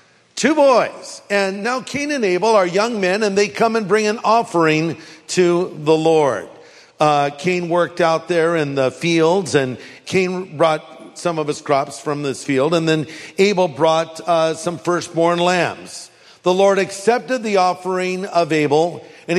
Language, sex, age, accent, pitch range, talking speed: English, male, 50-69, American, 160-200 Hz, 165 wpm